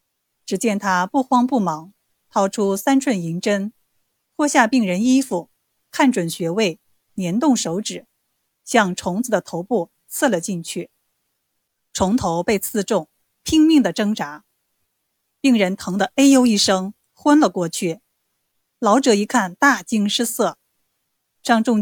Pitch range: 185-245 Hz